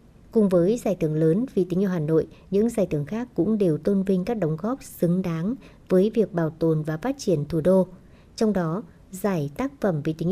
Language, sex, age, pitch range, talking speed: Vietnamese, male, 60-79, 165-205 Hz, 225 wpm